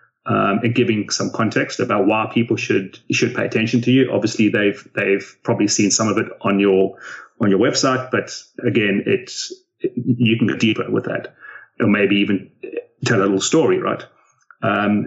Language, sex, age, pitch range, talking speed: English, male, 30-49, 100-125 Hz, 180 wpm